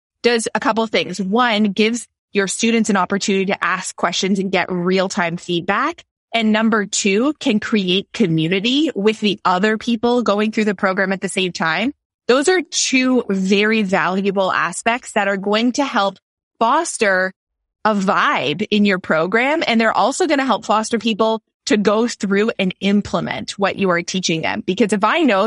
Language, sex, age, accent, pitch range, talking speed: English, female, 20-39, American, 195-235 Hz, 175 wpm